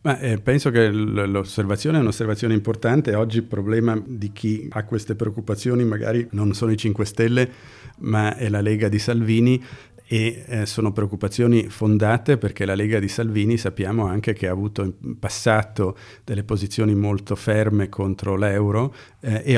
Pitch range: 100-115 Hz